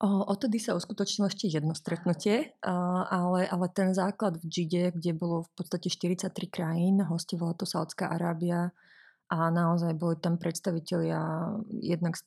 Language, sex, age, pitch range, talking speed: Slovak, female, 30-49, 165-185 Hz, 140 wpm